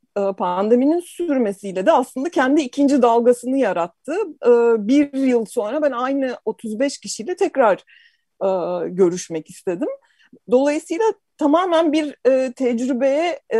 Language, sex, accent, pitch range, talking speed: Turkish, female, native, 210-280 Hz, 95 wpm